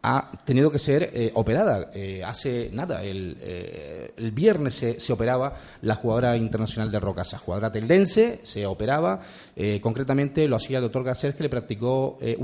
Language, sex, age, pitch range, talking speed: Spanish, male, 30-49, 110-135 Hz, 175 wpm